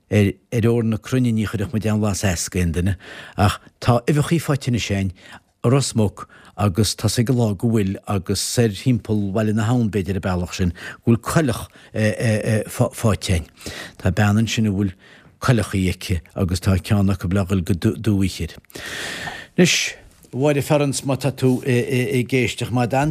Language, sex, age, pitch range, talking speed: English, male, 60-79, 100-125 Hz, 90 wpm